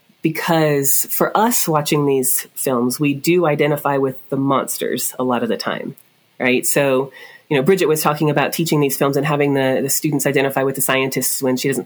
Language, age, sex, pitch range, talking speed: English, 30-49, female, 135-165 Hz, 200 wpm